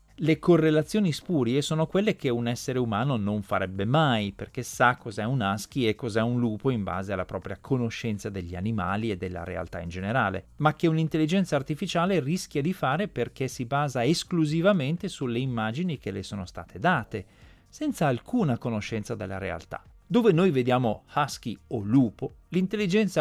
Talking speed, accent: 165 wpm, native